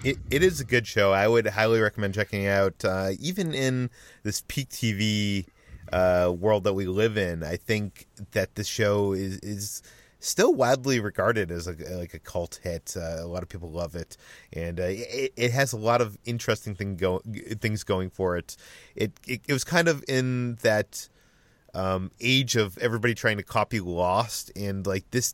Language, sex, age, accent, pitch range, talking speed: English, male, 30-49, American, 90-115 Hz, 195 wpm